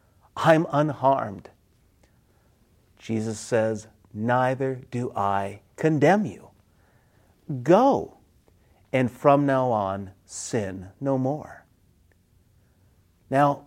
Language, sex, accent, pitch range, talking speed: English, male, American, 100-160 Hz, 80 wpm